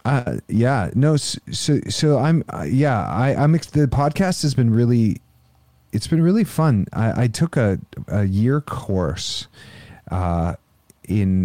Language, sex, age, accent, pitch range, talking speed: English, male, 30-49, American, 100-130 Hz, 150 wpm